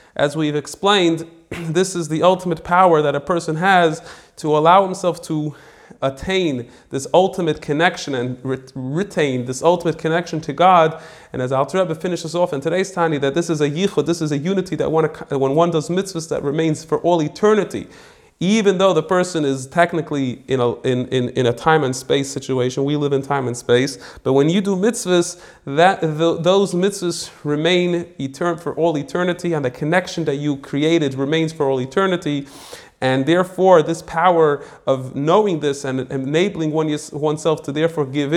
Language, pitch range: English, 140-170 Hz